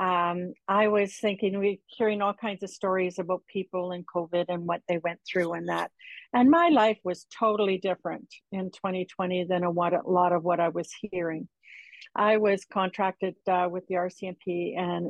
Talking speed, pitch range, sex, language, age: 190 wpm, 180-225 Hz, female, English, 50-69